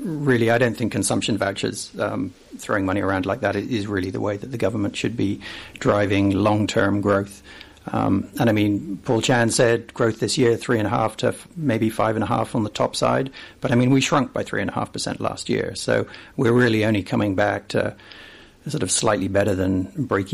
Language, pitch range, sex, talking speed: English, 105-125 Hz, male, 220 wpm